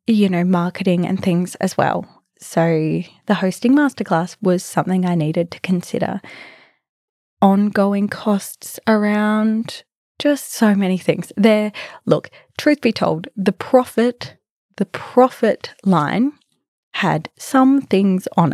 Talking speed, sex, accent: 125 wpm, female, Australian